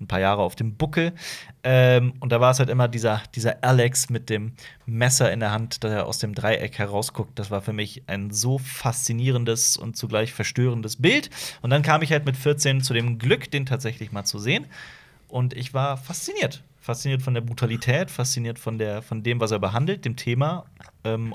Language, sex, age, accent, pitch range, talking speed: German, male, 30-49, German, 110-140 Hz, 200 wpm